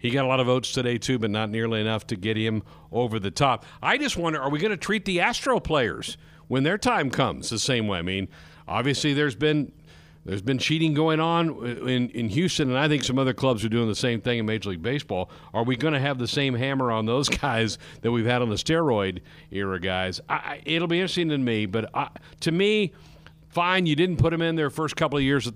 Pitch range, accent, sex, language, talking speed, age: 105-145 Hz, American, male, English, 245 wpm, 50-69